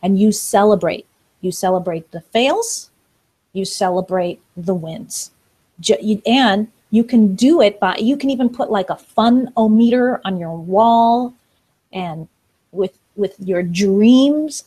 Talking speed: 130 wpm